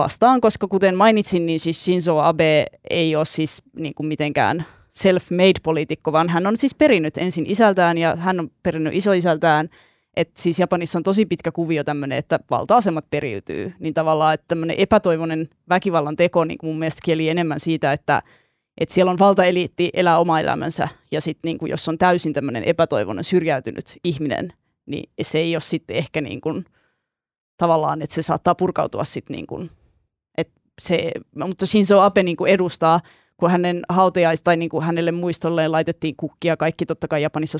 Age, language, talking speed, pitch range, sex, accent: 20-39, Finnish, 160 wpm, 155-180 Hz, female, native